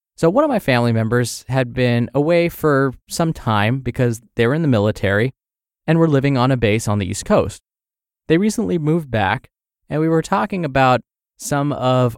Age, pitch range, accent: 20-39, 115-150 Hz, American